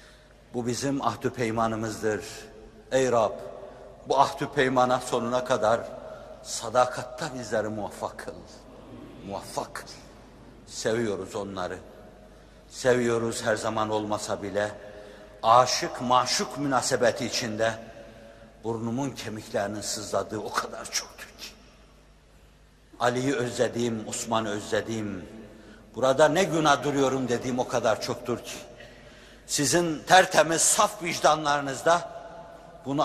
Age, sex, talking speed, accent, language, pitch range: 60-79, male, 95 wpm, native, Turkish, 115-140 Hz